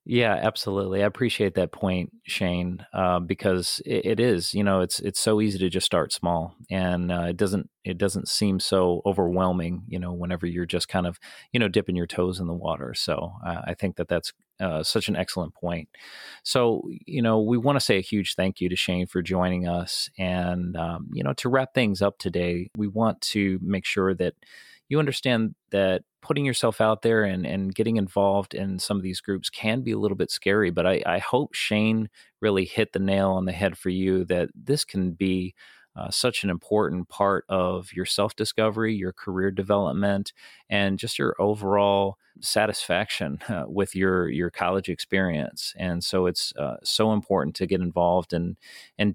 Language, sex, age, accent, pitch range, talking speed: English, male, 30-49, American, 90-105 Hz, 200 wpm